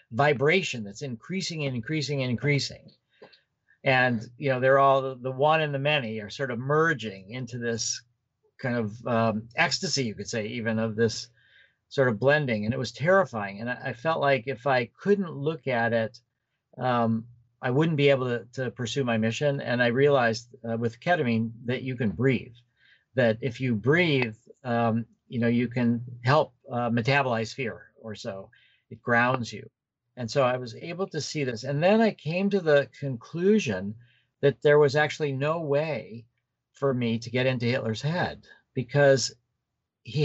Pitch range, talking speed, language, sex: 115-145 Hz, 175 wpm, English, male